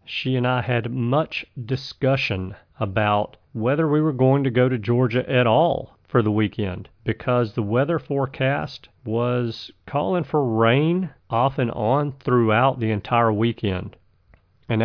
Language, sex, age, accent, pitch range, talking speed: English, male, 40-59, American, 110-135 Hz, 145 wpm